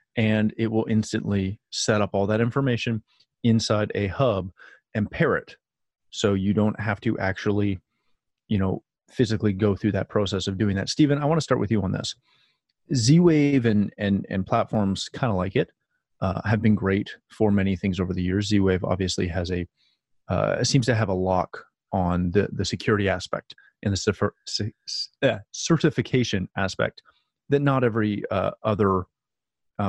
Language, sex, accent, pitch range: English, male, American, 100-125 Hz